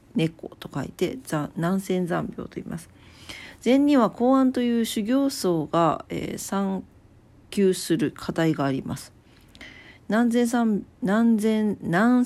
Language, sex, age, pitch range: Japanese, female, 40-59, 165-220 Hz